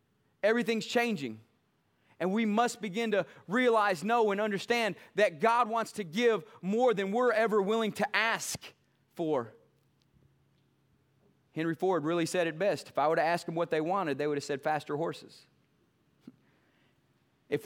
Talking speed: 155 wpm